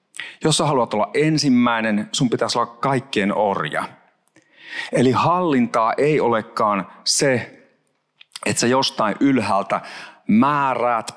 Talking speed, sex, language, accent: 105 wpm, male, Finnish, native